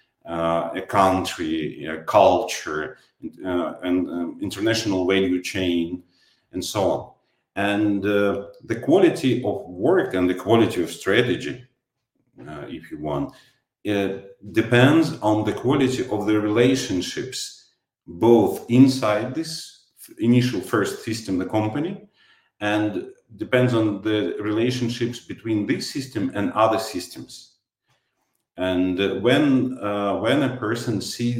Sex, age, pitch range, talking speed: male, 40-59, 95-120 Hz, 120 wpm